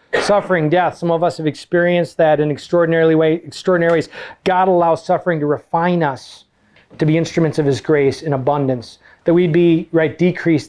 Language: English